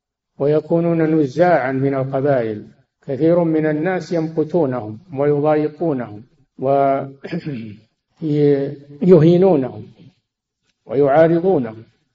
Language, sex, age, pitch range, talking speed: Arabic, male, 50-69, 130-160 Hz, 55 wpm